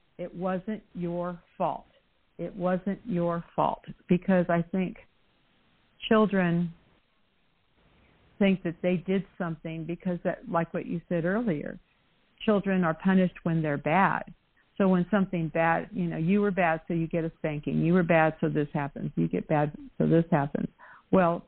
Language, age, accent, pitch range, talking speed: English, 50-69, American, 170-200 Hz, 155 wpm